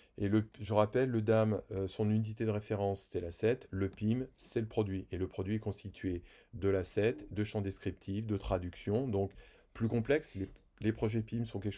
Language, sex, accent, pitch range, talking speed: French, male, French, 95-110 Hz, 195 wpm